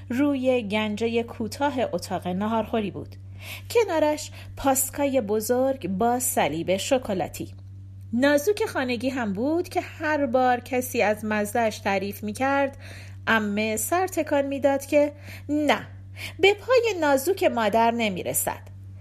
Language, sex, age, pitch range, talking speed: Persian, female, 40-59, 185-270 Hz, 115 wpm